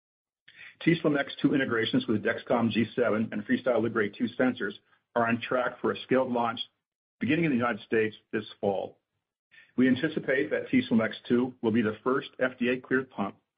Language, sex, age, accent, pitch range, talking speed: English, male, 50-69, American, 110-130 Hz, 165 wpm